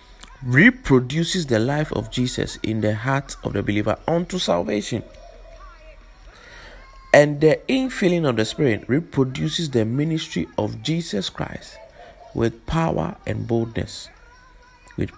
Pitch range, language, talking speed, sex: 110-160 Hz, English, 120 wpm, male